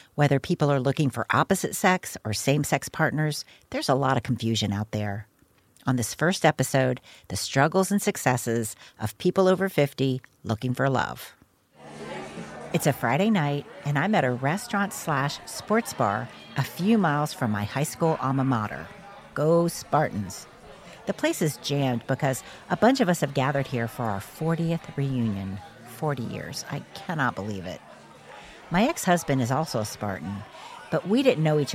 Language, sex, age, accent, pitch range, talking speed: English, female, 50-69, American, 115-165 Hz, 165 wpm